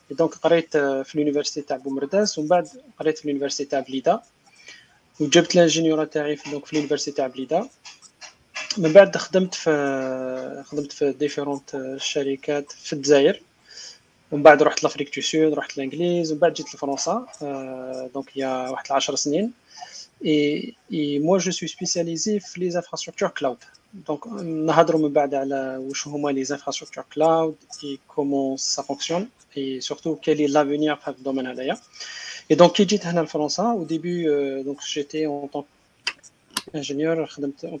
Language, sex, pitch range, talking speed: Arabic, male, 140-165 Hz, 115 wpm